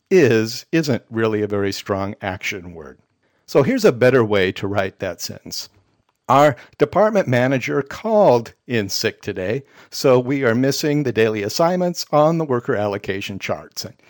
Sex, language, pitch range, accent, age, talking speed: male, English, 115-160 Hz, American, 60-79, 155 wpm